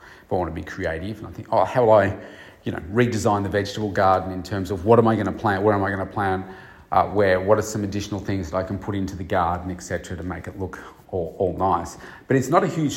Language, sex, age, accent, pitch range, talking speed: English, male, 40-59, Australian, 95-110 Hz, 280 wpm